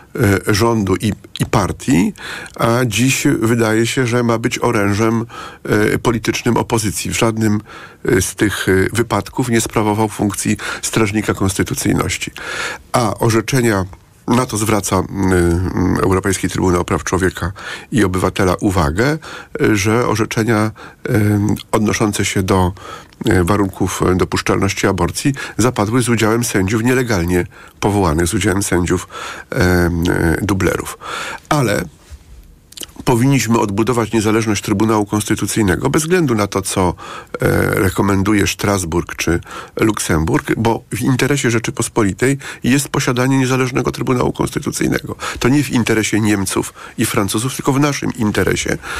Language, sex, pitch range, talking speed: Polish, male, 95-115 Hz, 110 wpm